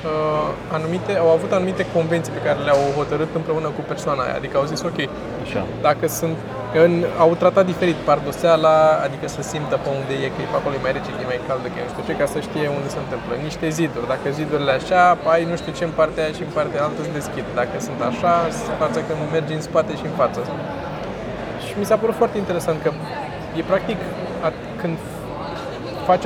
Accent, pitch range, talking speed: native, 150-180 Hz, 200 wpm